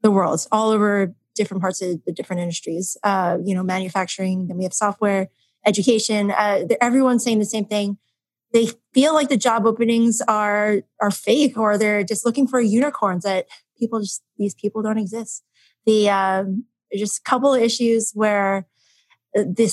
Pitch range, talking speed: 195-230 Hz, 175 wpm